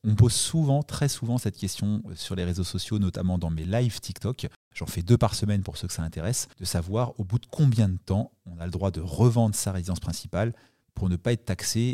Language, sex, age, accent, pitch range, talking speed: French, male, 30-49, French, 95-115 Hz, 240 wpm